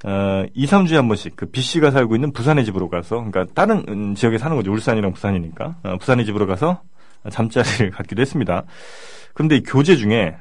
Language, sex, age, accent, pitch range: Korean, male, 30-49, native, 105-160 Hz